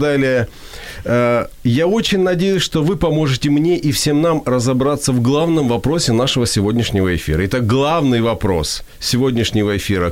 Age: 40-59